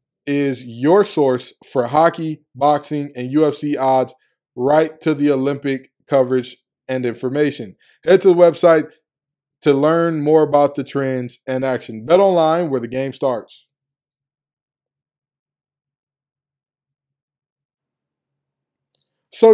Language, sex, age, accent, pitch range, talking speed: English, male, 20-39, American, 125-150 Hz, 110 wpm